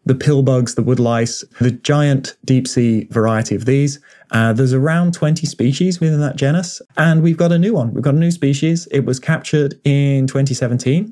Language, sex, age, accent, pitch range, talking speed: English, male, 20-39, British, 120-145 Hz, 200 wpm